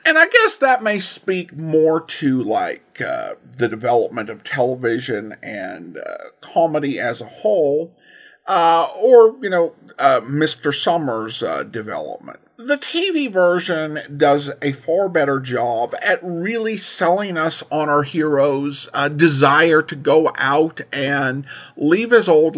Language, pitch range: English, 140-205 Hz